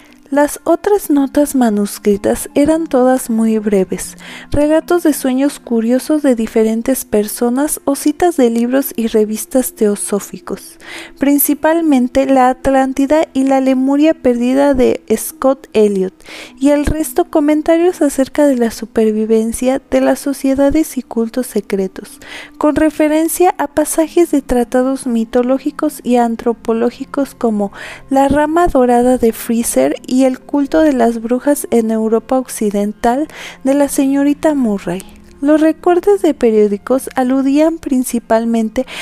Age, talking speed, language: 30-49, 125 wpm, Spanish